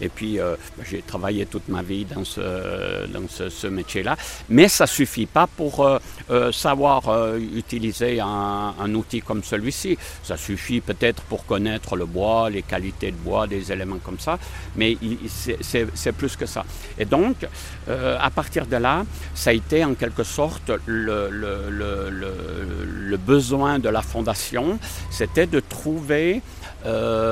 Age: 60-79